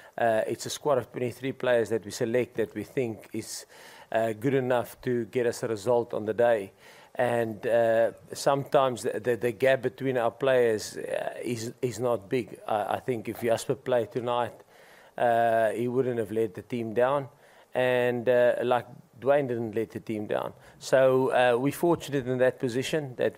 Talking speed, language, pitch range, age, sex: 185 wpm, English, 115-130 Hz, 40-59, male